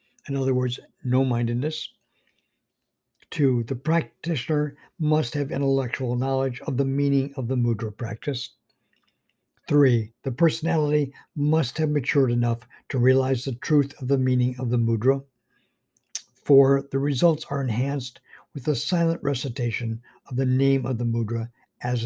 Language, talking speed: English, 140 wpm